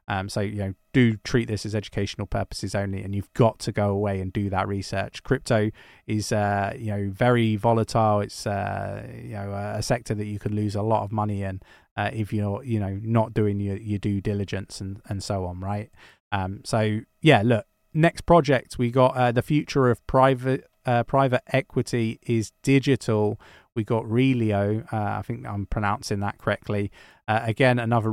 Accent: British